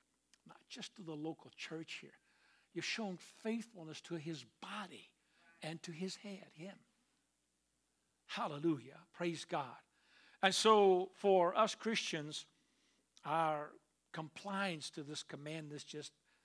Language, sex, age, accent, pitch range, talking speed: English, male, 60-79, American, 155-195 Hz, 115 wpm